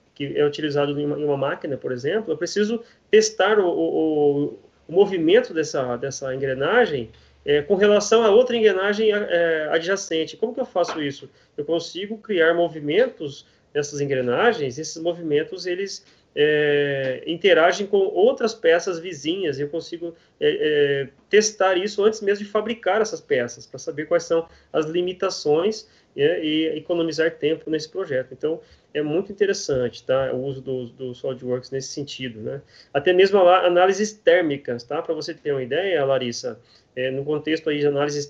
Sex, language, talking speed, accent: male, Portuguese, 150 wpm, Brazilian